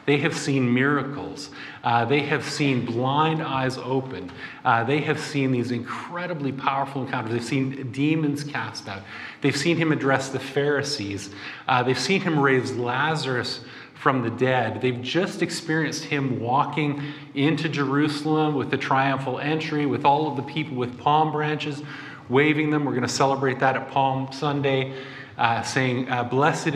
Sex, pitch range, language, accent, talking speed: male, 130-150 Hz, English, American, 160 wpm